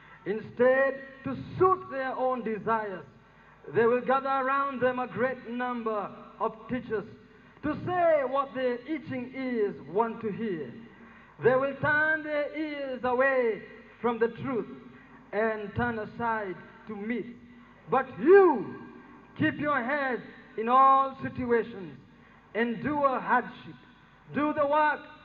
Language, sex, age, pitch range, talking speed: English, male, 50-69, 215-270 Hz, 125 wpm